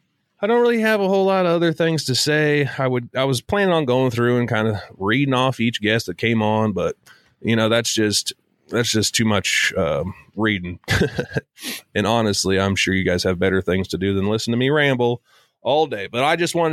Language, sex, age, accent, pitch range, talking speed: English, male, 30-49, American, 100-130 Hz, 225 wpm